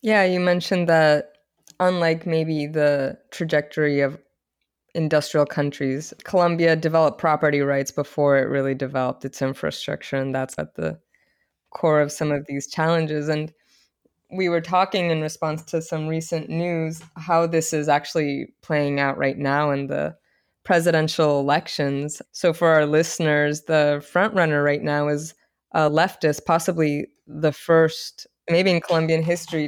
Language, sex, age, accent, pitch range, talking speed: English, female, 20-39, American, 150-175 Hz, 145 wpm